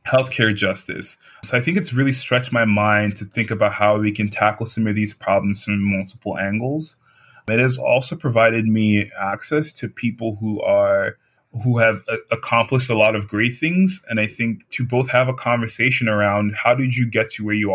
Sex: male